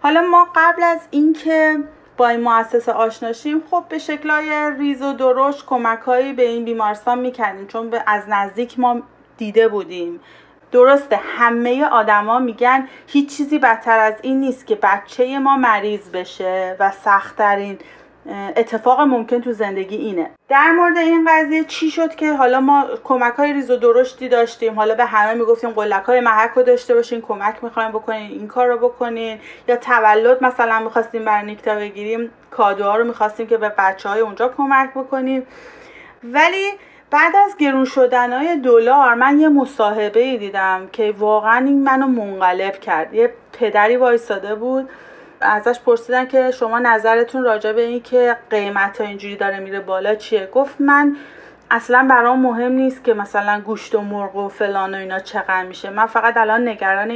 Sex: female